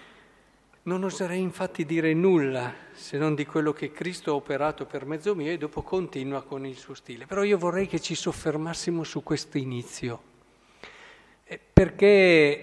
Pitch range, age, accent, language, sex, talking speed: 140-175 Hz, 50-69, native, Italian, male, 155 wpm